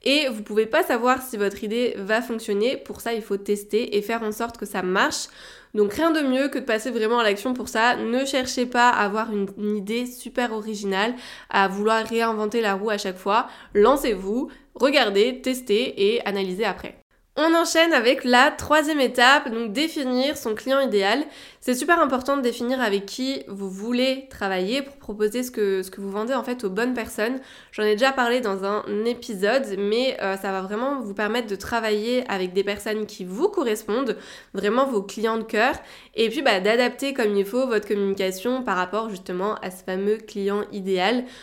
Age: 20-39